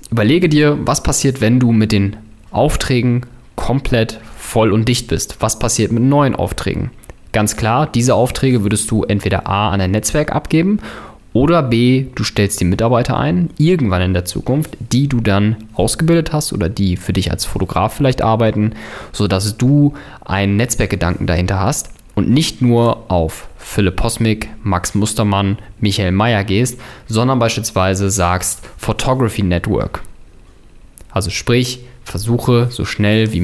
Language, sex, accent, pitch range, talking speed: German, male, German, 100-125 Hz, 150 wpm